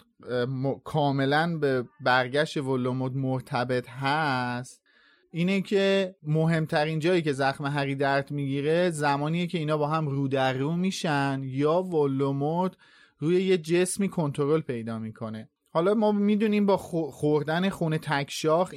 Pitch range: 135-165 Hz